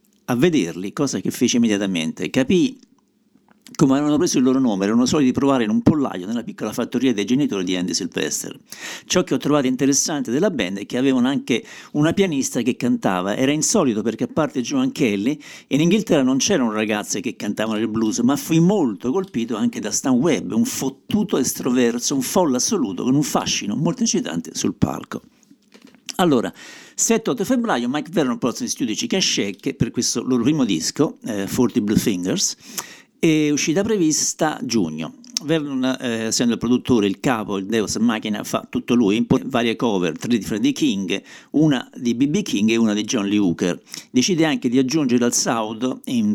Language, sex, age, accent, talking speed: Italian, male, 50-69, native, 180 wpm